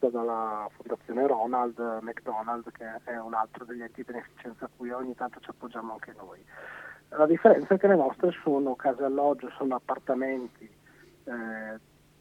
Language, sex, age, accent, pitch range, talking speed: Italian, male, 40-59, native, 125-155 Hz, 155 wpm